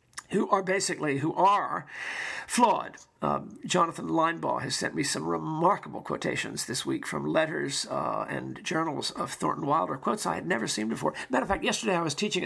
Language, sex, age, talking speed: English, male, 50-69, 185 wpm